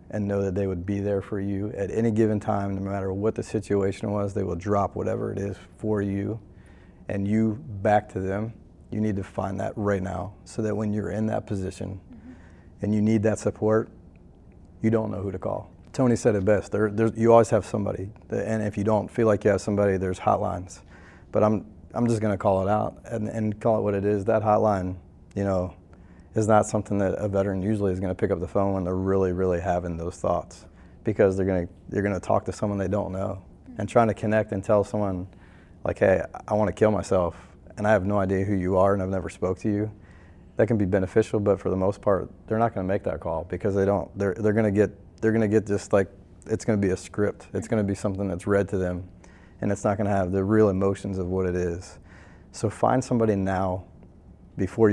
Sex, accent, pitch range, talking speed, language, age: male, American, 95-105 Hz, 230 wpm, English, 40-59